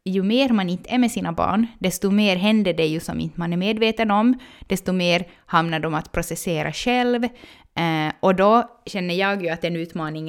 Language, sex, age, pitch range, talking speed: Swedish, female, 20-39, 170-215 Hz, 190 wpm